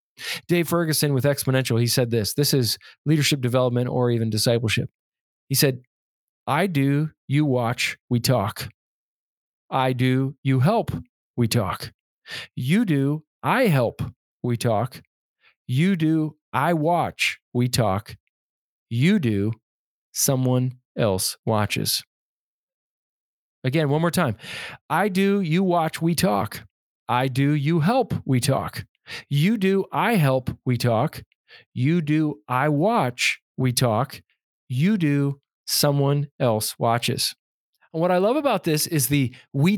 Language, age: English, 40-59